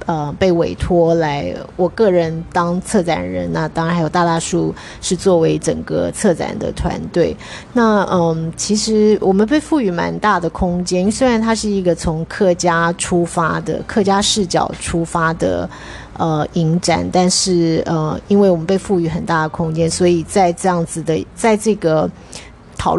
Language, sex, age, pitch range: Chinese, female, 30-49, 160-190 Hz